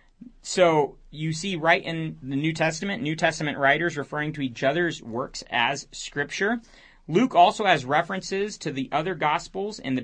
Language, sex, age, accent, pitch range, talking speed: English, male, 30-49, American, 135-175 Hz, 165 wpm